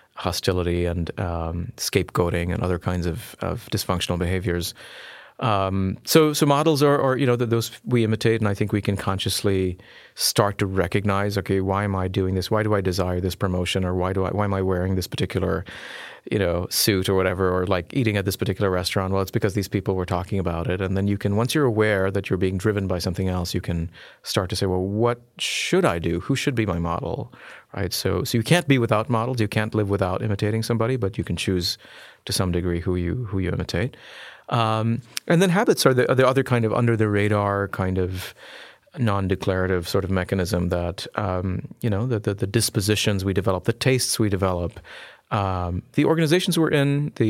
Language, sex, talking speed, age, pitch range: English, male, 210 wpm, 40-59, 95-115 Hz